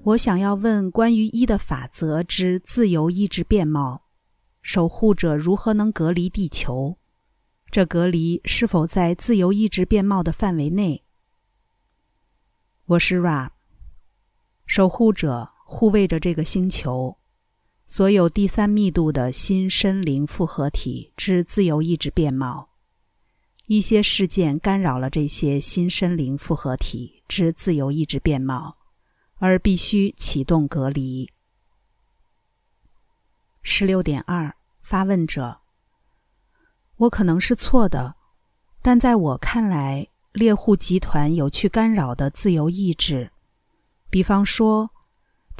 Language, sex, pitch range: Chinese, female, 145-200 Hz